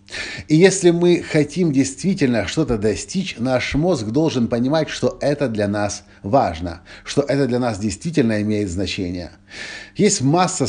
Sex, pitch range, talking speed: male, 100-140 Hz, 140 wpm